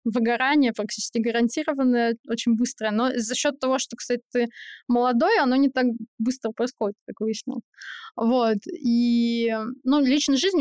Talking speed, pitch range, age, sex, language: 140 wpm, 225-260 Hz, 20-39, female, Russian